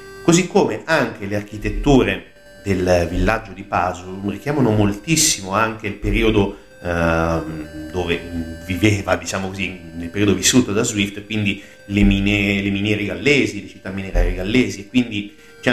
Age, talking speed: 30-49, 135 wpm